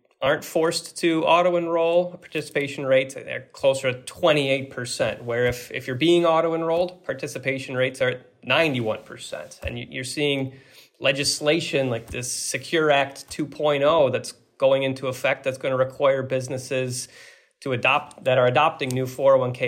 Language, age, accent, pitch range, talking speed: English, 30-49, American, 125-145 Hz, 145 wpm